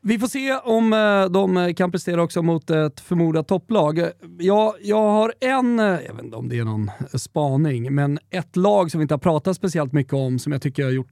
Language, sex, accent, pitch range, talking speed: Swedish, male, native, 140-180 Hz, 220 wpm